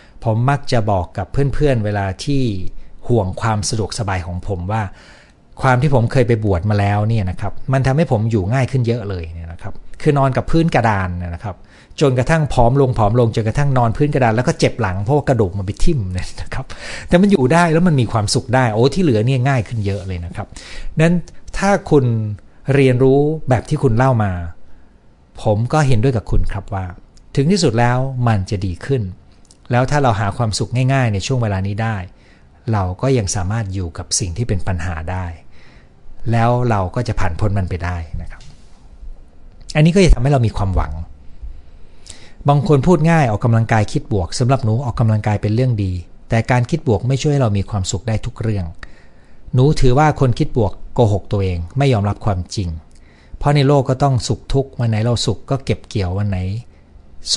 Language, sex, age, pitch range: Thai, male, 60-79, 95-130 Hz